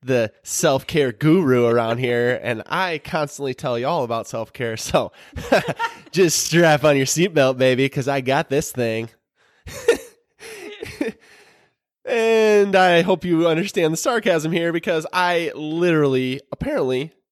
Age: 20-39